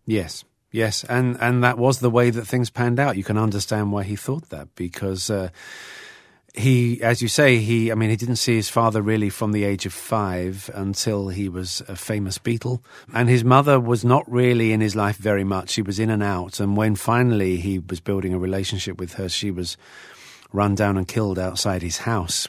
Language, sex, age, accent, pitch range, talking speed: English, male, 40-59, British, 95-120 Hz, 215 wpm